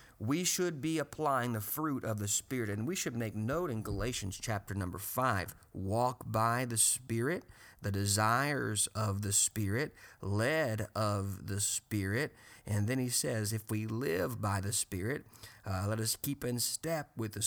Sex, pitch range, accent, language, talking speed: male, 105-130 Hz, American, English, 170 wpm